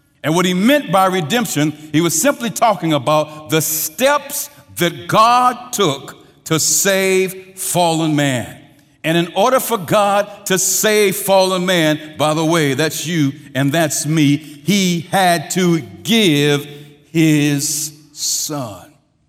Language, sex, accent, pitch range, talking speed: English, male, American, 145-180 Hz, 135 wpm